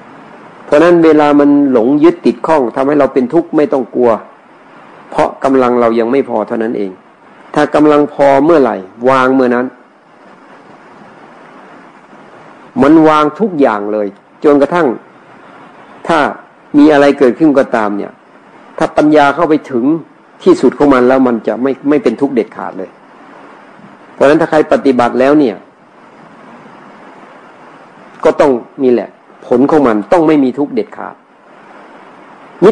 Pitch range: 120-150 Hz